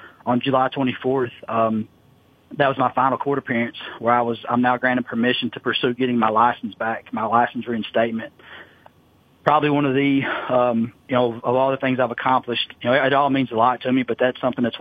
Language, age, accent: English, 30-49, American